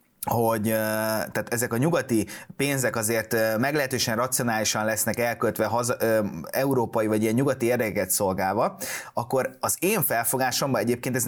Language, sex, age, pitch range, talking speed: Hungarian, male, 30-49, 110-140 Hz, 115 wpm